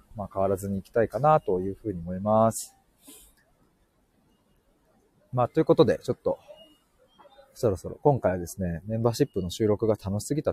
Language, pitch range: Japanese, 95-130 Hz